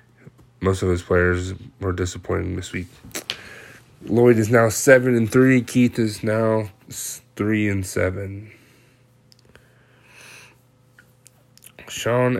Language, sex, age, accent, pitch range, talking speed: English, male, 20-39, American, 100-120 Hz, 100 wpm